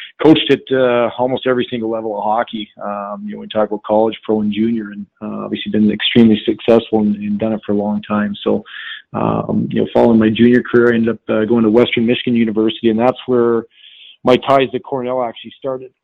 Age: 40-59